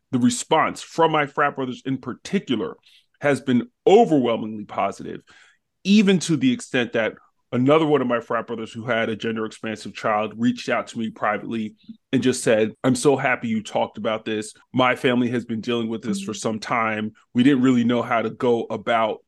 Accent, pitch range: American, 110-135 Hz